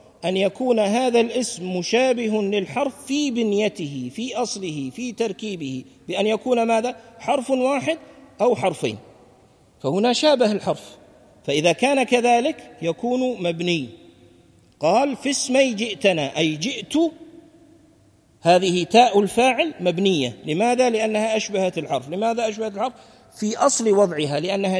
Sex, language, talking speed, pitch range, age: male, Arabic, 115 wpm, 155-250 Hz, 50-69